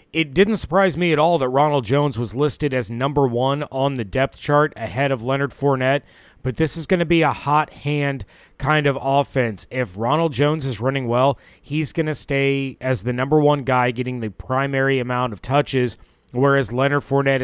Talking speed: 200 wpm